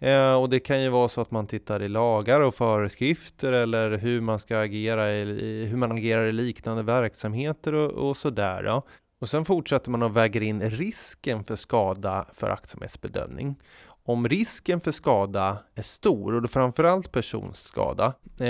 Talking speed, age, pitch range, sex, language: 160 wpm, 30-49, 110-140 Hz, male, Swedish